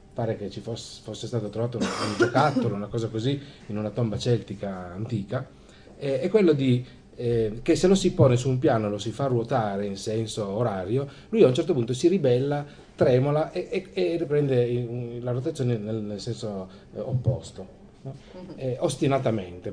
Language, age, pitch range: Italian, 30-49, 100-135 Hz